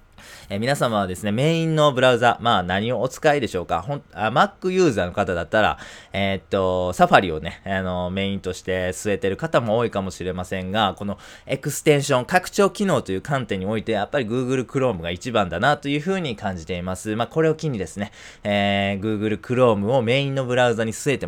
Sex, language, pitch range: male, Japanese, 95-130 Hz